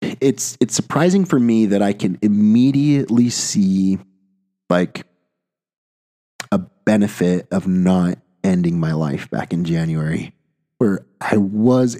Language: English